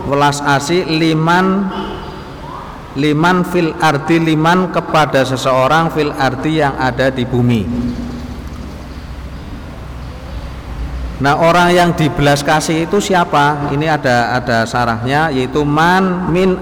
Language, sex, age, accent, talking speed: Indonesian, male, 50-69, native, 95 wpm